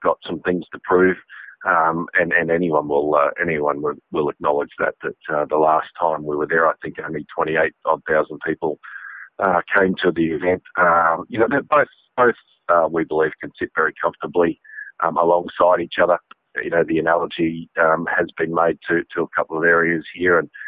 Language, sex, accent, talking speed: English, male, Australian, 195 wpm